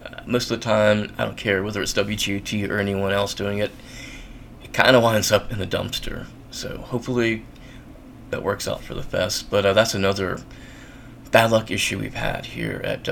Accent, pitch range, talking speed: American, 100-125 Hz, 190 wpm